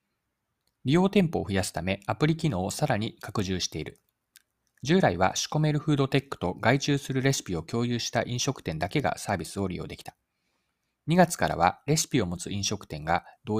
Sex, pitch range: male, 95-150 Hz